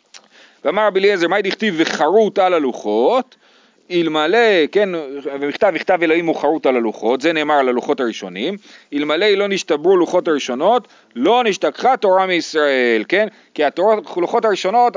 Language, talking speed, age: Hebrew, 135 wpm, 40-59